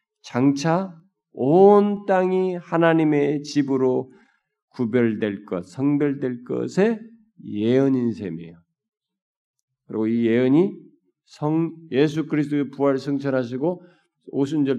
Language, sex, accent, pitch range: Korean, male, native, 135-185 Hz